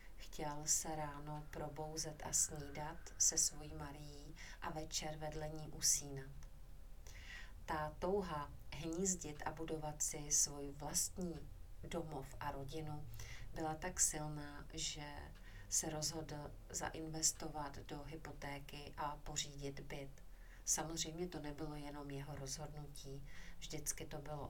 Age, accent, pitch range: 40-59, native, 145-155 Hz